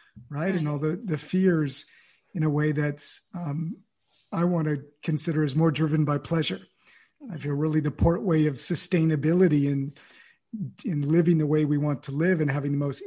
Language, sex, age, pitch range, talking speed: English, male, 50-69, 150-170 Hz, 185 wpm